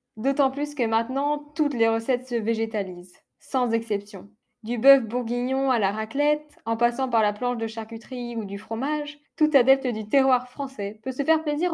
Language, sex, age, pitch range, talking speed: French, female, 10-29, 220-270 Hz, 185 wpm